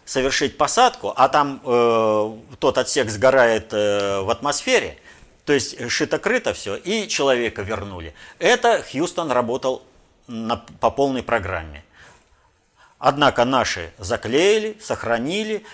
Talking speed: 110 wpm